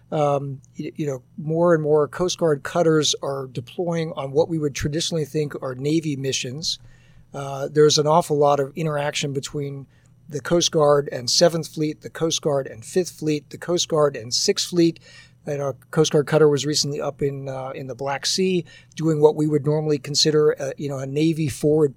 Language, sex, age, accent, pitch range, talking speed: English, male, 50-69, American, 140-155 Hz, 195 wpm